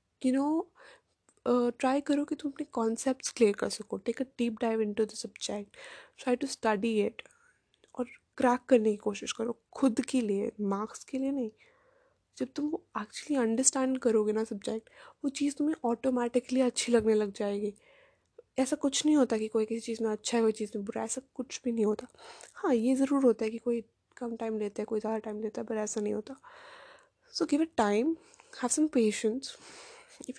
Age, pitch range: 10-29, 220-290 Hz